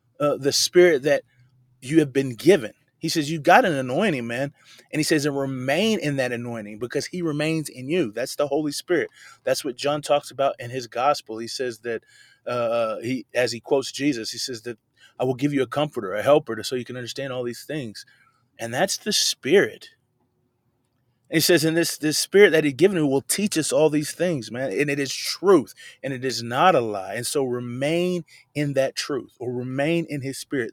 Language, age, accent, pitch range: English, 30-49, American, 120-150 Hz